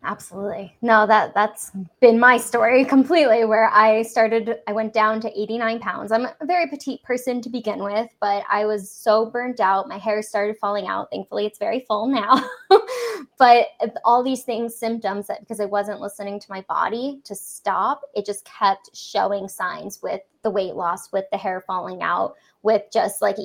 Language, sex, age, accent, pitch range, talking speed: English, female, 10-29, American, 200-235 Hz, 185 wpm